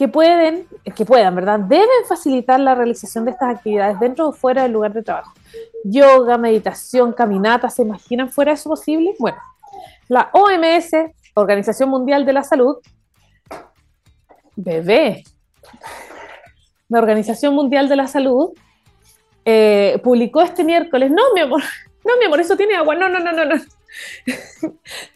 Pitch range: 230-320 Hz